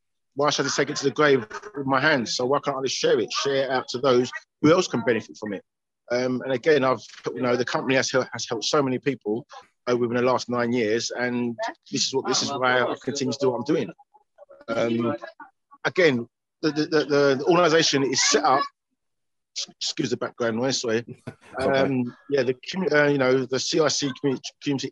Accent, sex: British, male